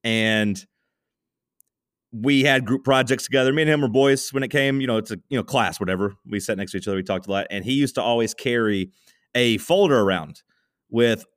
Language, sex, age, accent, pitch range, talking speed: English, male, 30-49, American, 115-145 Hz, 220 wpm